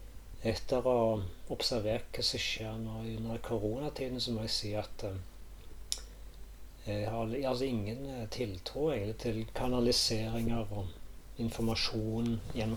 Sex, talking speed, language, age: male, 105 wpm, English, 40-59